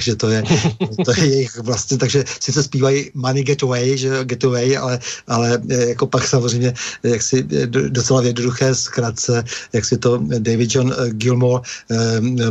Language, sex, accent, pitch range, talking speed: Czech, male, native, 115-135 Hz, 160 wpm